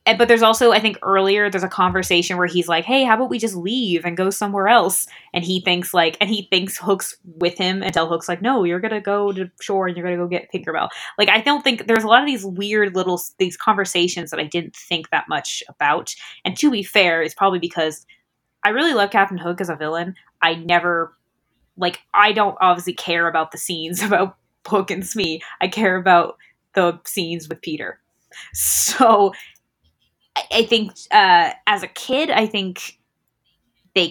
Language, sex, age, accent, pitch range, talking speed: English, female, 10-29, American, 170-220 Hz, 205 wpm